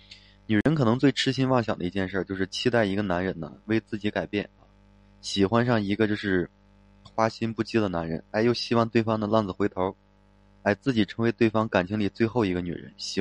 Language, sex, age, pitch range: Chinese, male, 20-39, 95-115 Hz